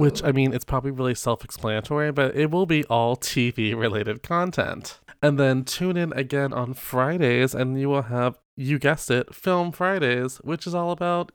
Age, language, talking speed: 20-39, English, 180 wpm